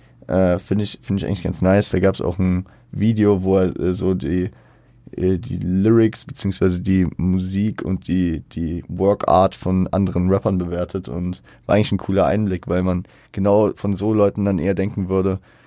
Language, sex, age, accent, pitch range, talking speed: German, male, 20-39, German, 90-105 Hz, 190 wpm